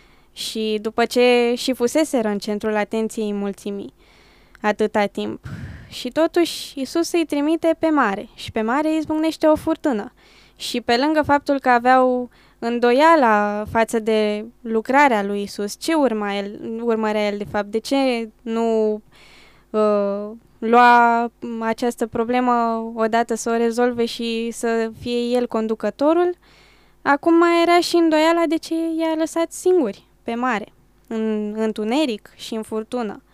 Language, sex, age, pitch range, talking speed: Romanian, female, 10-29, 220-285 Hz, 135 wpm